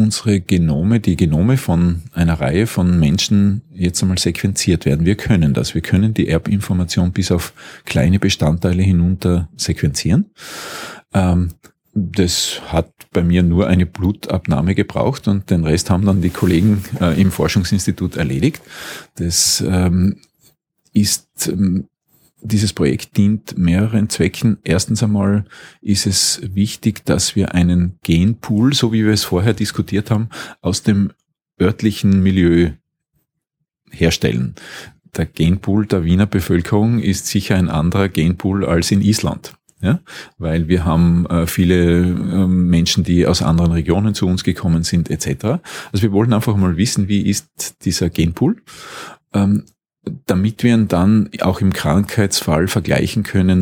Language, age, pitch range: German, 40-59, 85-105 Hz